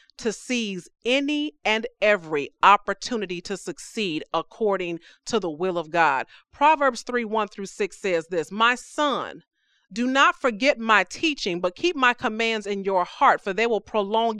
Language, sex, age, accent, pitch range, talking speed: English, female, 40-59, American, 210-280 Hz, 165 wpm